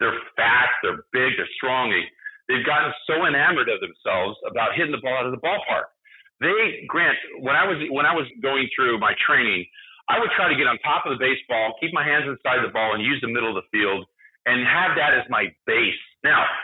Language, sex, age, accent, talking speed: English, male, 50-69, American, 225 wpm